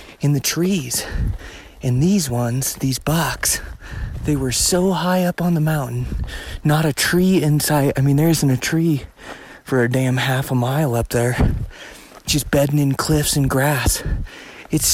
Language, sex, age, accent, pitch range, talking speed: English, male, 30-49, American, 120-145 Hz, 165 wpm